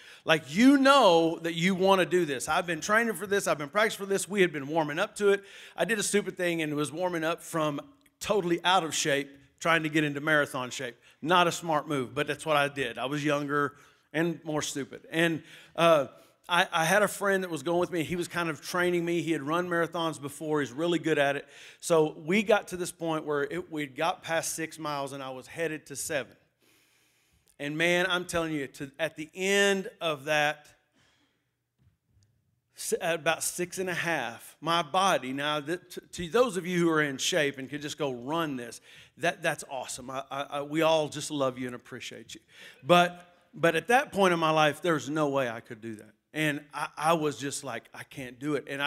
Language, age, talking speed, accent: English, 40-59, 225 wpm, American